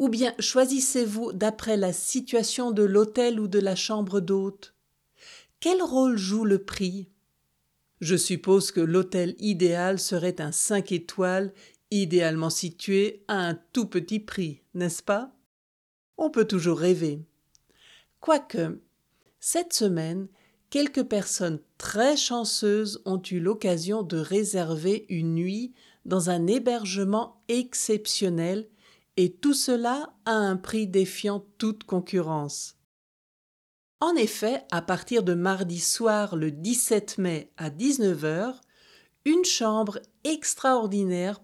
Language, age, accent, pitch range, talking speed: French, 60-79, French, 180-225 Hz, 120 wpm